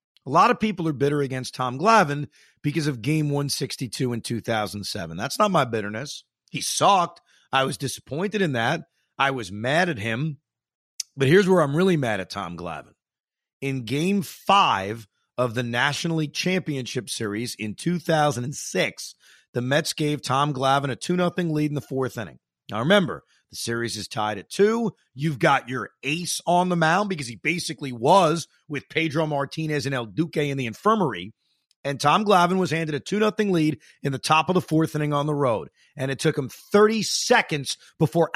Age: 40-59